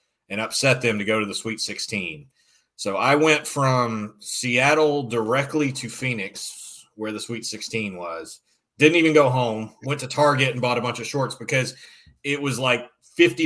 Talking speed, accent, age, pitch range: 180 wpm, American, 30-49, 110-135 Hz